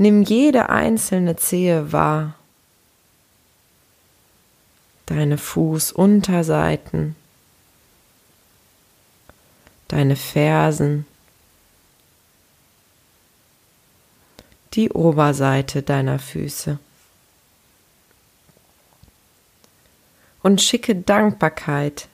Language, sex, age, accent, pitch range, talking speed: German, female, 30-49, German, 140-180 Hz, 45 wpm